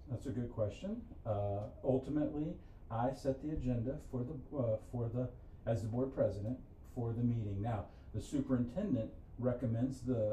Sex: male